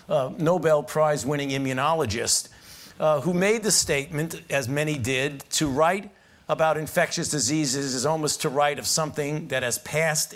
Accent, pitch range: American, 140-175 Hz